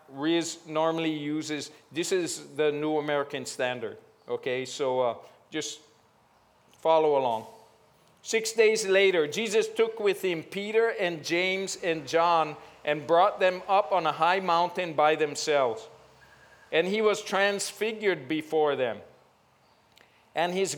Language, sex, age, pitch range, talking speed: English, male, 50-69, 155-205 Hz, 130 wpm